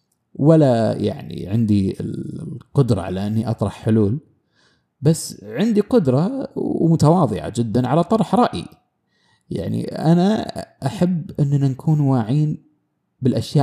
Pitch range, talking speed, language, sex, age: 115-165 Hz, 100 wpm, Arabic, male, 30-49